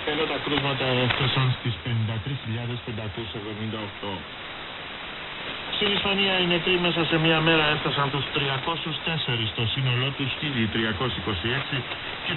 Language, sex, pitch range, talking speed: Italian, male, 110-140 Hz, 105 wpm